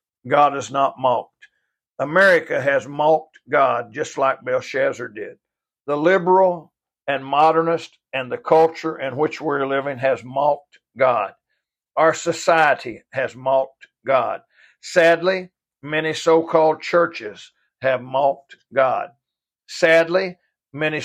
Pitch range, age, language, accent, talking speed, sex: 135-165 Hz, 60-79, English, American, 115 wpm, male